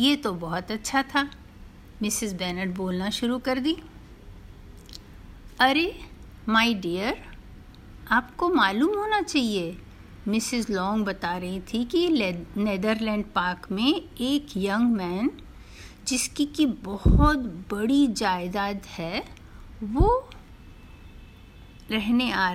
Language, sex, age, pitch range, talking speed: Hindi, female, 50-69, 180-260 Hz, 105 wpm